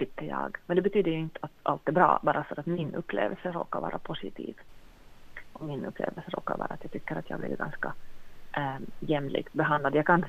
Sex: female